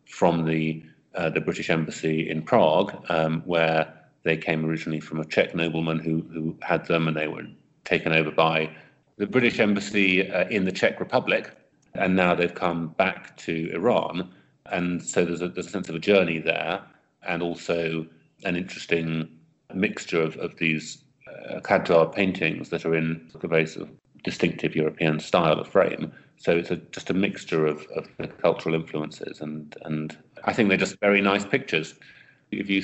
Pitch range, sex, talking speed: 80-90 Hz, male, 185 wpm